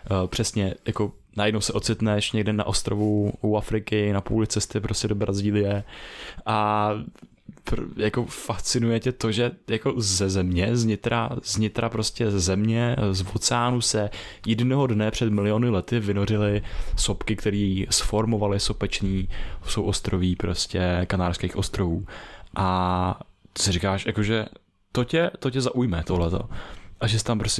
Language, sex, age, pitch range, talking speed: Czech, male, 20-39, 100-120 Hz, 140 wpm